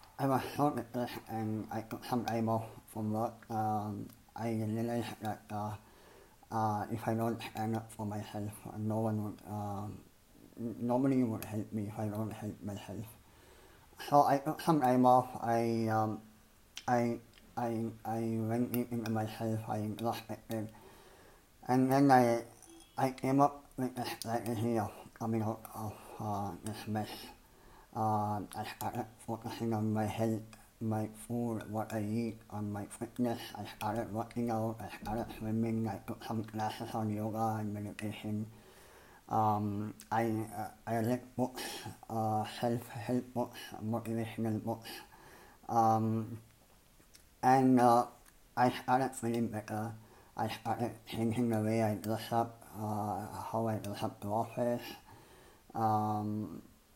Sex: male